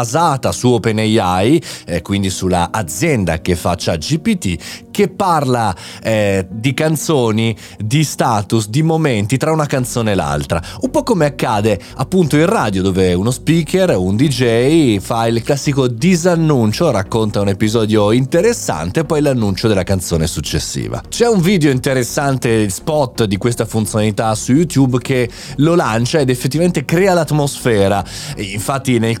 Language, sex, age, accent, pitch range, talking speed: Italian, male, 30-49, native, 105-155 Hz, 145 wpm